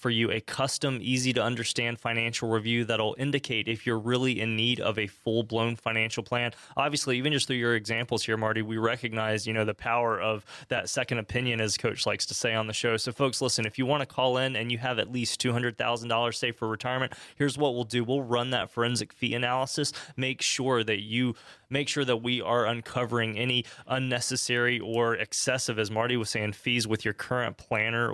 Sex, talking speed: male, 215 wpm